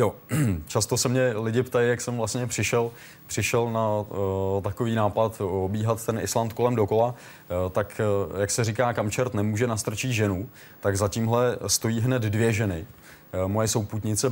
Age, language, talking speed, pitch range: 20-39, Czech, 170 wpm, 100-110 Hz